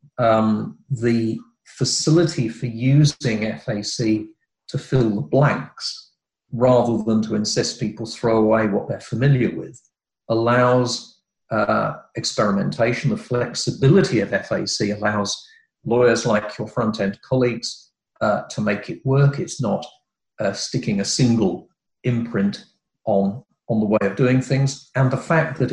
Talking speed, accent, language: 135 wpm, British, English